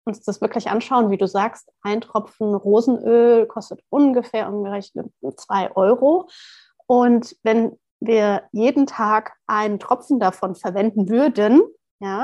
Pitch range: 205-245 Hz